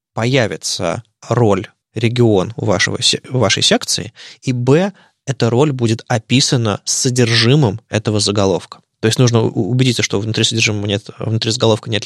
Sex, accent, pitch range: male, native, 105-135 Hz